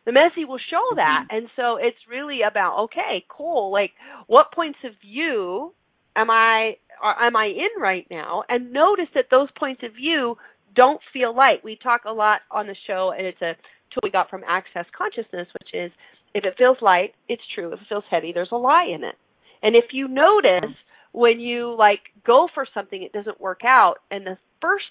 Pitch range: 195-270 Hz